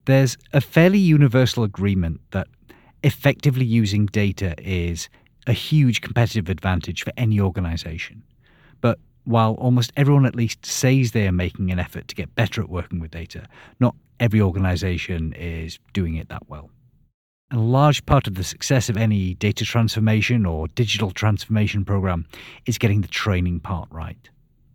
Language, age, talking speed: English, 40-59, 155 wpm